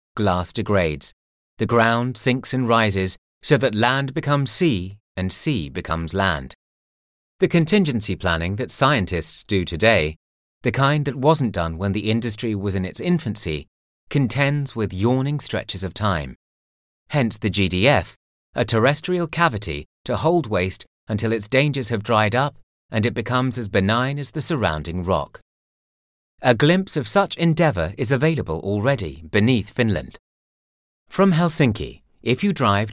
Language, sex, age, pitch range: English, male, 30-49, 90-135 Hz